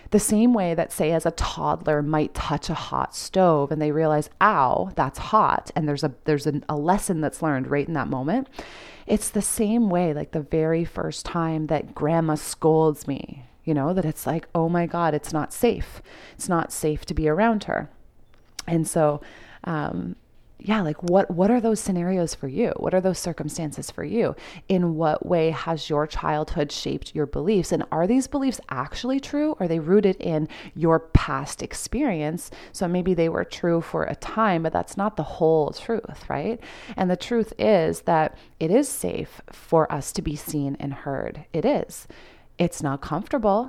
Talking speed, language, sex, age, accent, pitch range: 190 wpm, English, female, 30-49, American, 150-185 Hz